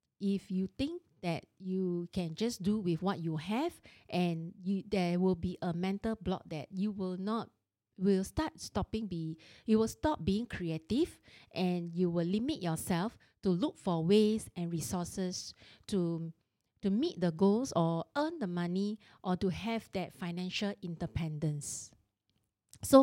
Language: English